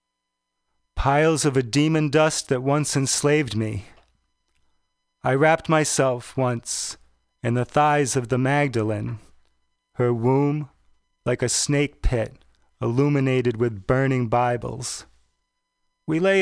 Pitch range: 110-140 Hz